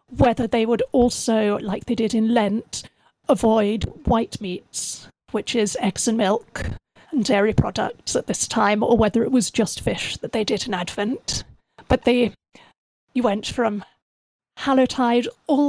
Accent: British